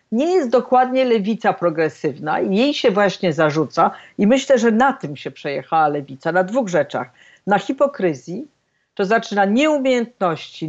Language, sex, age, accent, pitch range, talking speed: Polish, female, 50-69, native, 180-235 Hz, 145 wpm